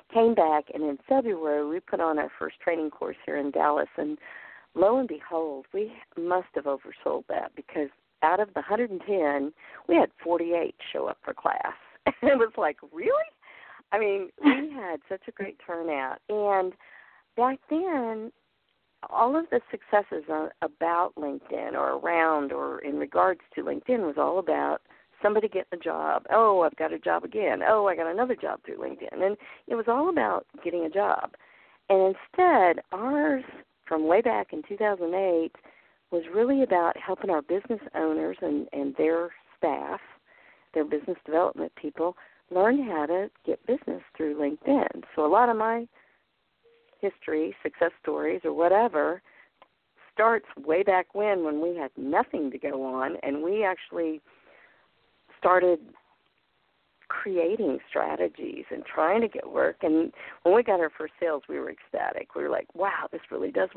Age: 50-69